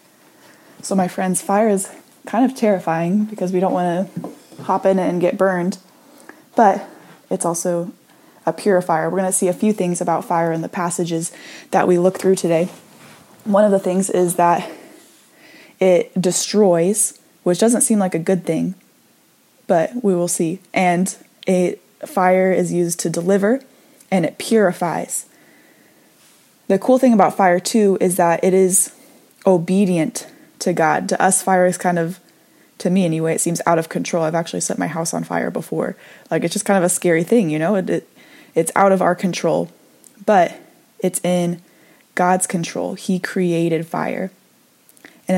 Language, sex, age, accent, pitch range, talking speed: English, female, 20-39, American, 175-200 Hz, 170 wpm